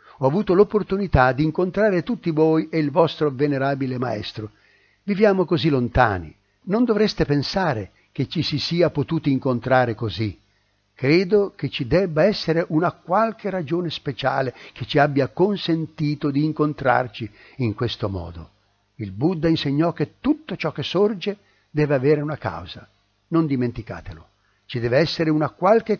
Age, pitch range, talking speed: 60-79, 115-170 Hz, 145 wpm